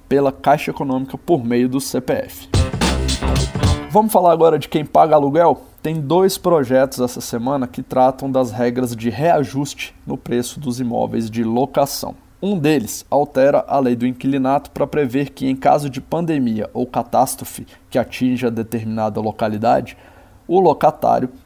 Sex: male